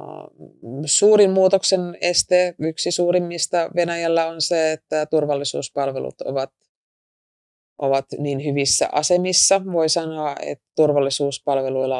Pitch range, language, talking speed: 135-170 Hz, Finnish, 95 wpm